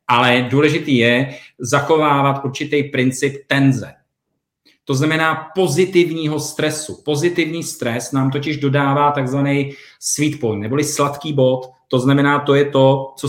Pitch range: 125-145 Hz